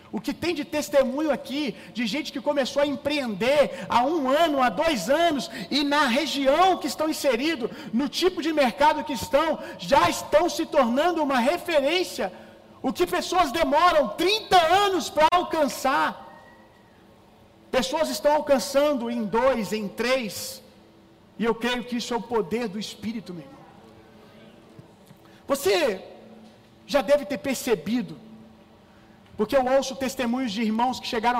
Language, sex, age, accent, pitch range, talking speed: Gujarati, male, 40-59, Brazilian, 230-285 Hz, 145 wpm